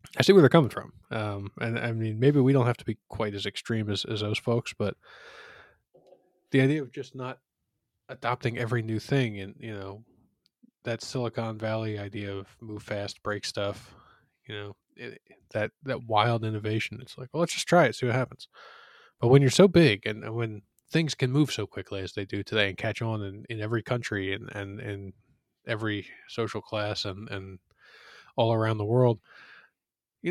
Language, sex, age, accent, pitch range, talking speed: English, male, 20-39, American, 105-125 Hz, 195 wpm